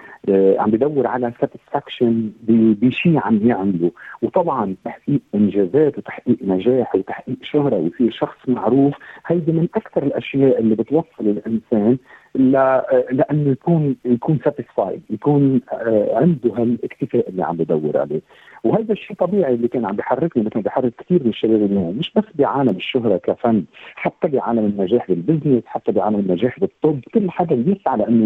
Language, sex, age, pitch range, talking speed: Arabic, male, 50-69, 110-150 Hz, 140 wpm